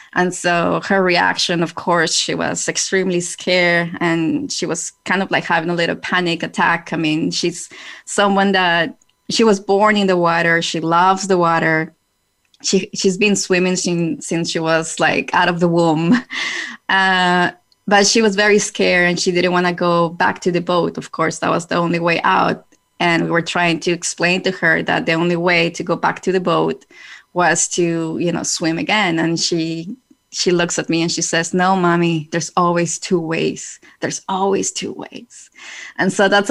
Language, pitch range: English, 170-190 Hz